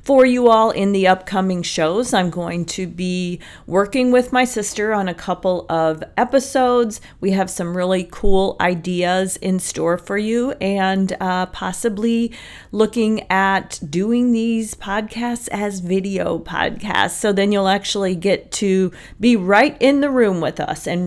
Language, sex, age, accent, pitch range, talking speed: English, female, 40-59, American, 175-210 Hz, 155 wpm